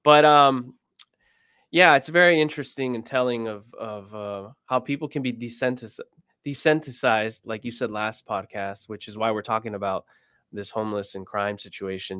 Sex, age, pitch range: male, 20-39, 110-140 Hz